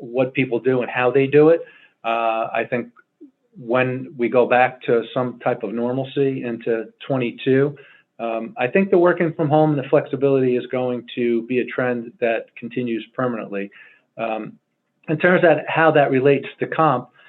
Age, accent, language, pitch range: 40-59, American, English, 120-155 Hz